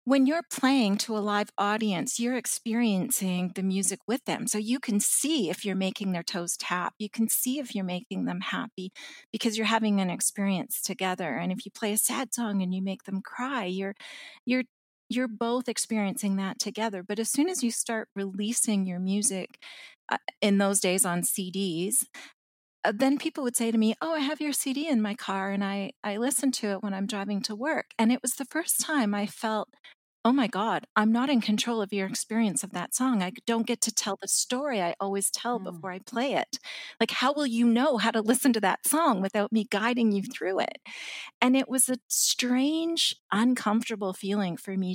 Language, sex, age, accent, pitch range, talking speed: English, female, 40-59, American, 195-245 Hz, 210 wpm